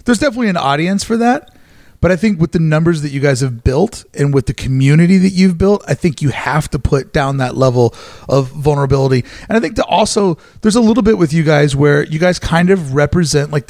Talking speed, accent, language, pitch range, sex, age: 230 wpm, American, English, 140-185 Hz, male, 30-49